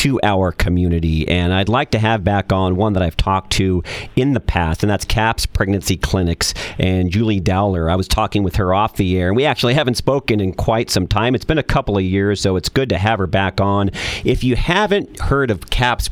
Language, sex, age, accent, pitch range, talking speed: English, male, 40-59, American, 90-110 Hz, 230 wpm